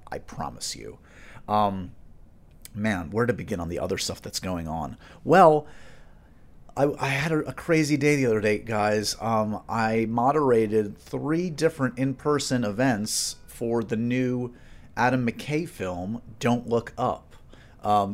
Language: English